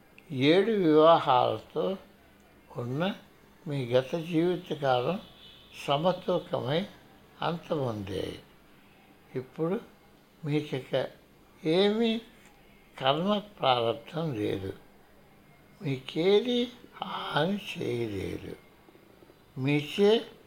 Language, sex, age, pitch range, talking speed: Telugu, male, 60-79, 135-195 Hz, 55 wpm